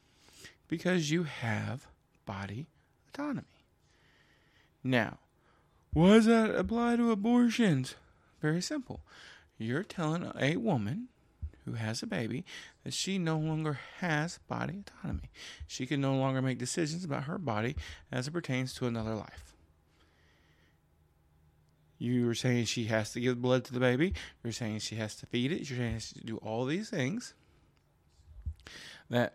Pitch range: 110-165 Hz